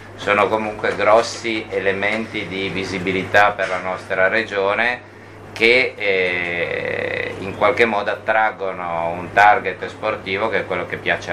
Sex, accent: male, native